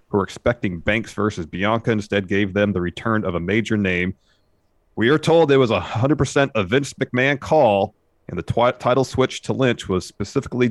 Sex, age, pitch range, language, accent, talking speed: male, 30-49, 95-115 Hz, English, American, 200 wpm